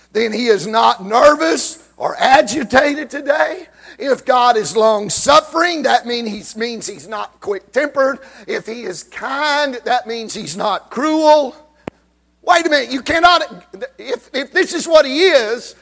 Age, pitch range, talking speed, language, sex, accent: 50-69, 195-300 Hz, 150 wpm, English, male, American